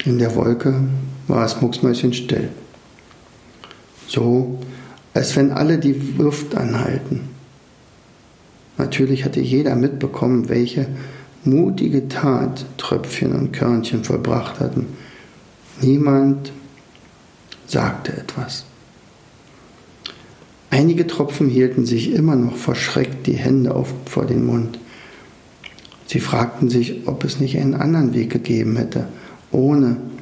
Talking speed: 105 wpm